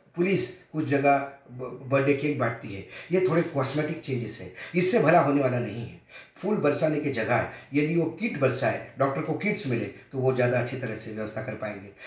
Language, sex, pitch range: Hindi, male, 115-145 Hz